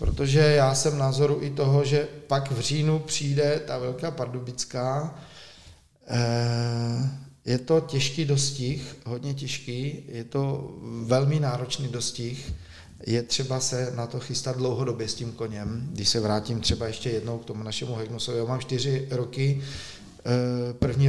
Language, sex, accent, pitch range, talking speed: Czech, male, native, 115-135 Hz, 140 wpm